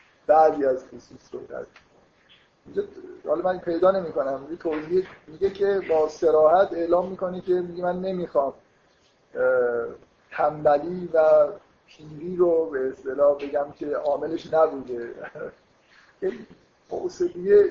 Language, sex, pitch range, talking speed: Persian, male, 150-185 Hz, 110 wpm